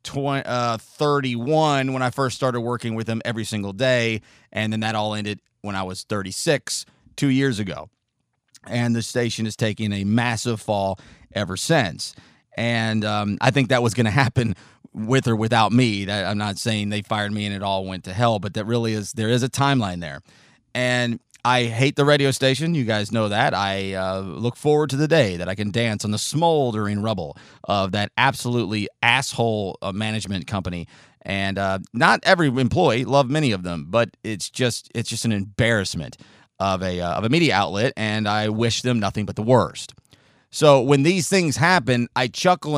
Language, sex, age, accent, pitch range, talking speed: English, male, 30-49, American, 105-130 Hz, 190 wpm